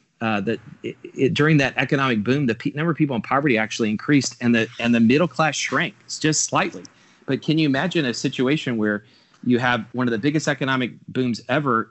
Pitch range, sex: 110-135 Hz, male